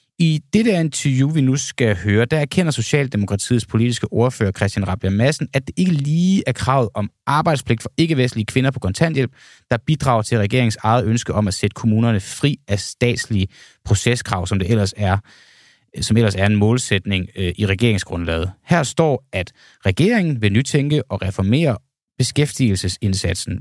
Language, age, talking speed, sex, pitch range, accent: Danish, 30-49, 160 wpm, male, 100-135 Hz, native